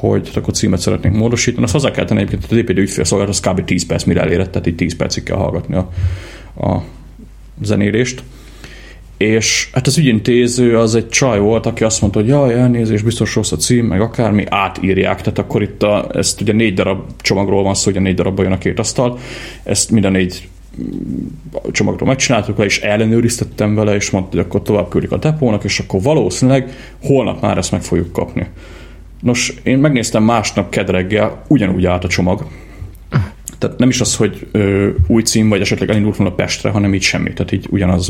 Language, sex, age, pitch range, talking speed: Hungarian, male, 30-49, 90-115 Hz, 190 wpm